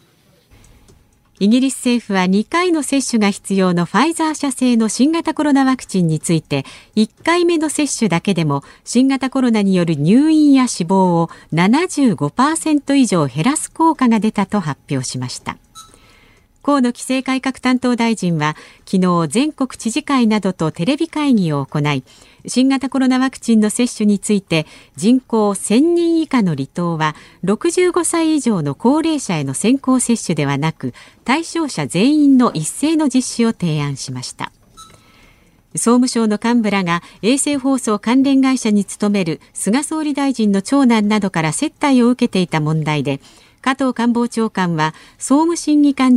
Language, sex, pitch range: Japanese, female, 175-270 Hz